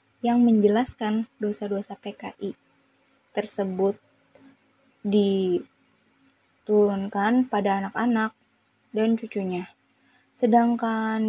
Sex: female